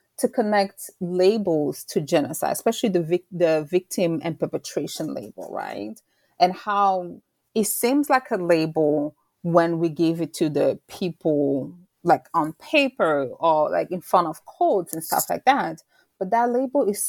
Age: 30-49